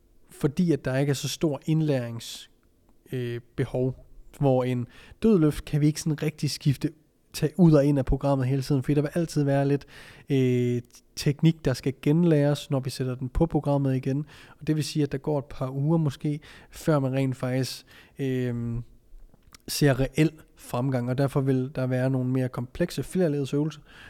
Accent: native